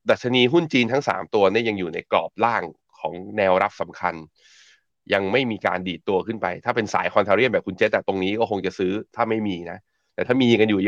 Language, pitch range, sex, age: Thai, 90-115 Hz, male, 20-39